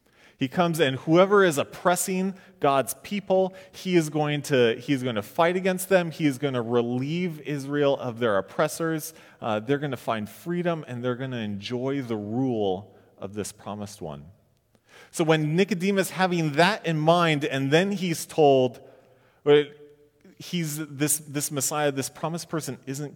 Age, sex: 30-49, male